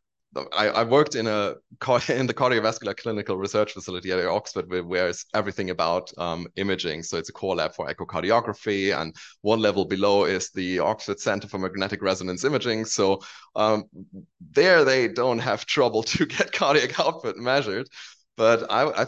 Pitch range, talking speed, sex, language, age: 95-115 Hz, 165 wpm, male, English, 30-49